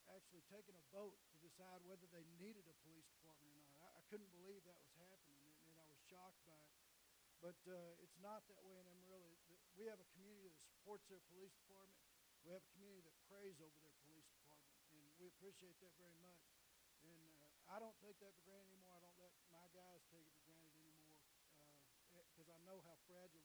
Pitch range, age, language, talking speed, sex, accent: 160-195 Hz, 60-79, English, 220 wpm, male, American